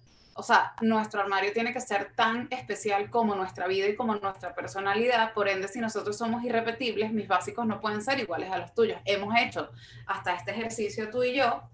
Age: 20-39